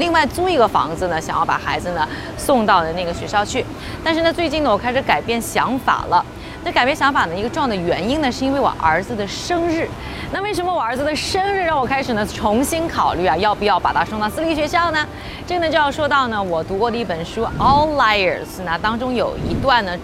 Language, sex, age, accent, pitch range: Chinese, female, 20-39, native, 230-340 Hz